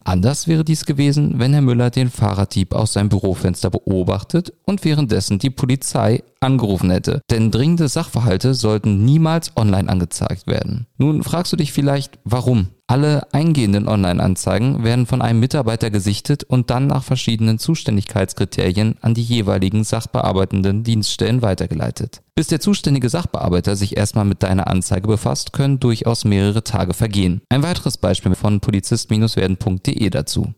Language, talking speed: German, 145 wpm